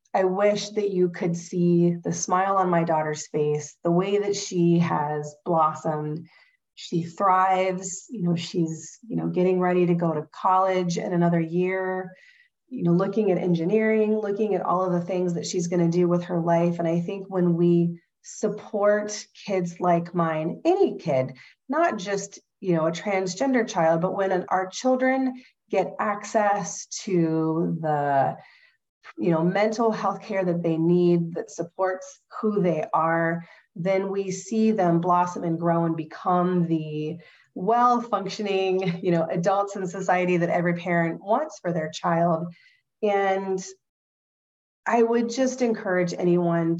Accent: American